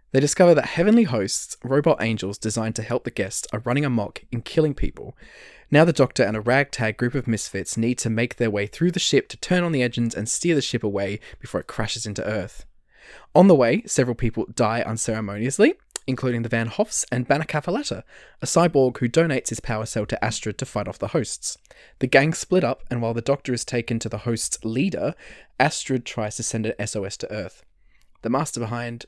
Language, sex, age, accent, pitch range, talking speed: English, male, 20-39, Australian, 110-145 Hz, 210 wpm